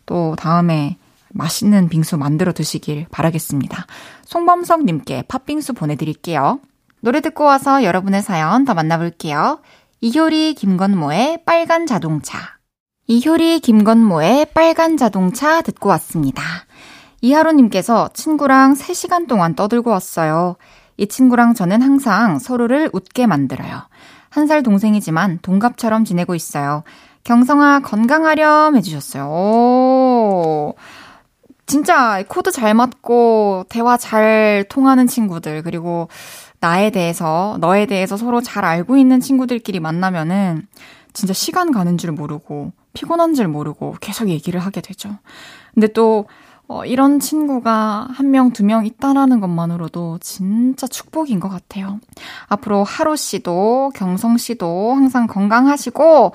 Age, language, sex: 20-39, Korean, female